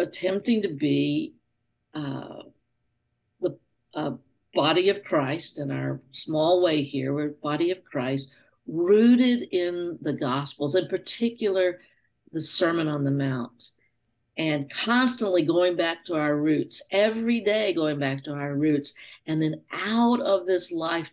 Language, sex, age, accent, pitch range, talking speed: English, female, 50-69, American, 140-195 Hz, 140 wpm